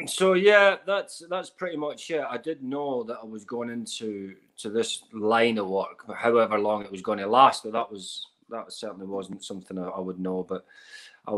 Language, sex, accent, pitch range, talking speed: English, male, British, 105-140 Hz, 215 wpm